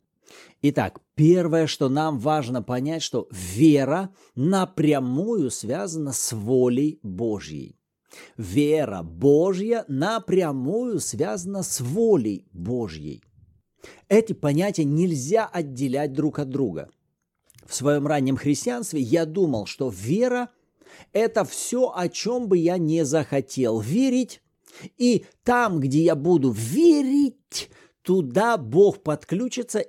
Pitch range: 145-215 Hz